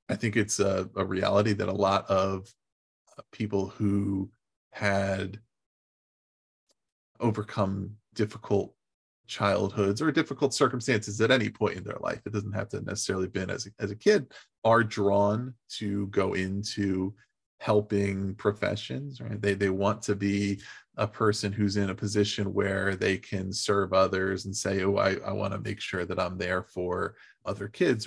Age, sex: 20-39, male